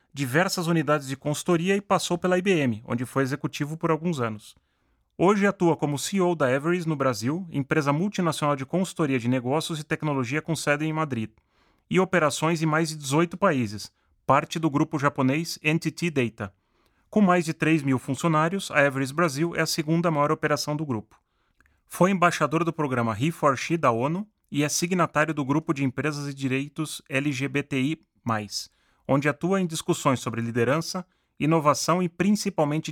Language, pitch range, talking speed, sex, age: Portuguese, 135-170 Hz, 160 wpm, male, 30-49